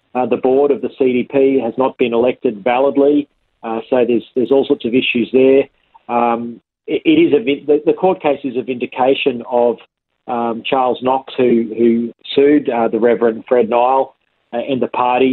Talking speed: 185 wpm